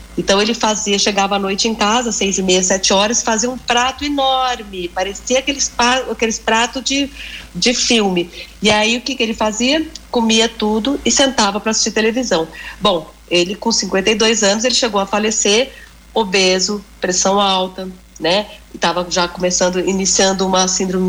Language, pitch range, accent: Portuguese, 190-235 Hz, Brazilian